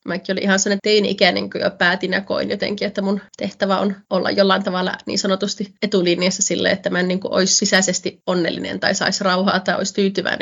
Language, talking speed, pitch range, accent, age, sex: Finnish, 200 wpm, 185-200 Hz, native, 30-49, female